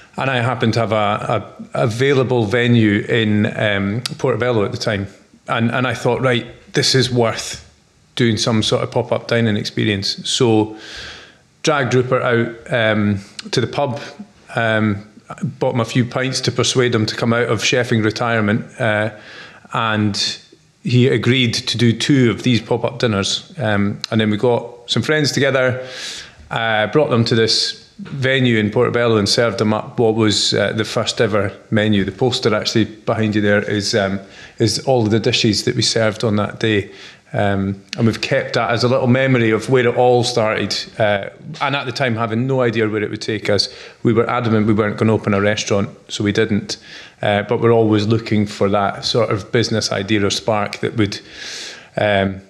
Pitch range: 105-125 Hz